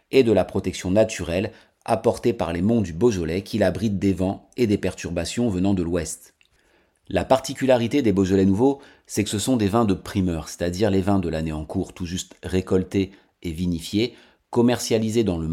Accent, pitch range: French, 95-120 Hz